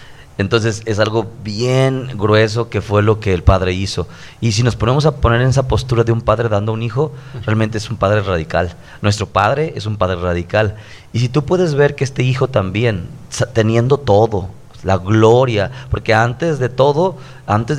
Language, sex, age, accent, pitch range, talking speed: Spanish, male, 30-49, Mexican, 105-130 Hz, 190 wpm